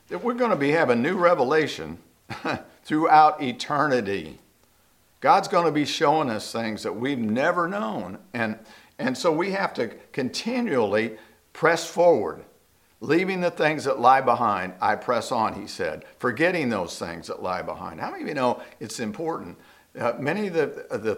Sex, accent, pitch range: male, American, 110-165 Hz